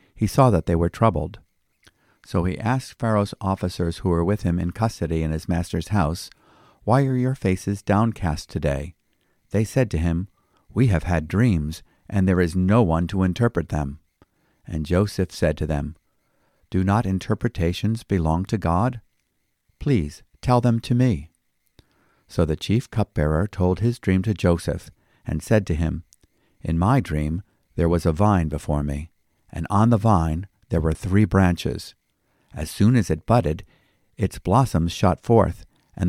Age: 50-69